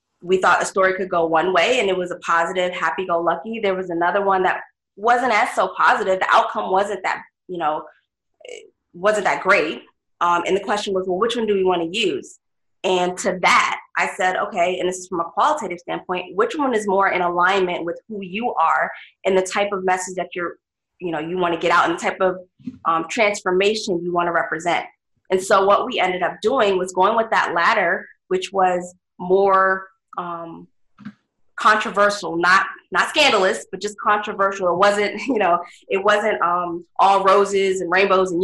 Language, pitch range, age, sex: English, 180-210 Hz, 20-39, female